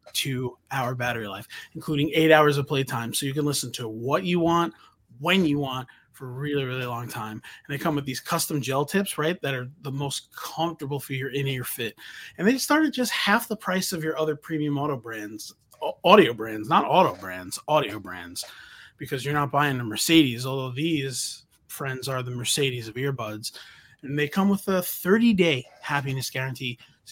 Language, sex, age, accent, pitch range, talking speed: English, male, 30-49, American, 125-160 Hz, 195 wpm